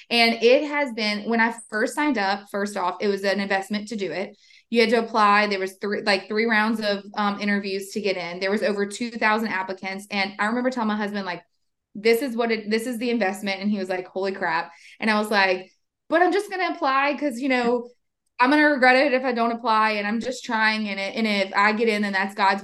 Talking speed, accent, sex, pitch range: 255 wpm, American, female, 195-235 Hz